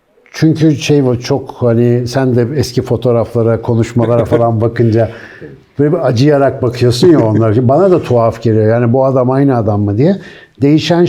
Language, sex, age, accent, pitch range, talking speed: Turkish, male, 60-79, native, 115-155 Hz, 155 wpm